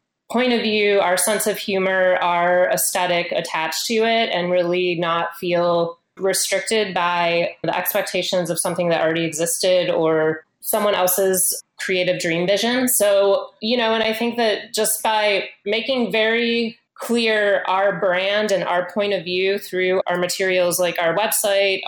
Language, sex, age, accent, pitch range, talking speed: English, female, 30-49, American, 180-210 Hz, 155 wpm